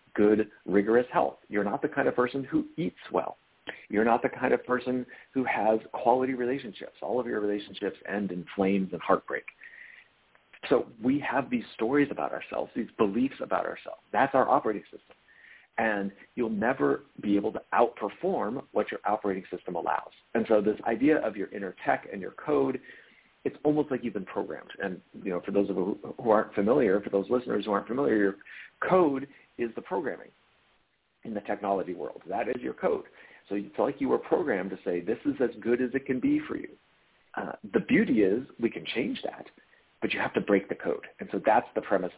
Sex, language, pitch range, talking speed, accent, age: male, English, 100-145 Hz, 200 wpm, American, 40-59